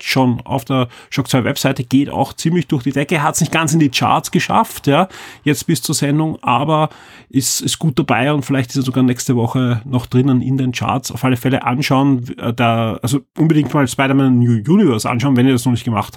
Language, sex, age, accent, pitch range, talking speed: German, male, 30-49, German, 120-140 Hz, 225 wpm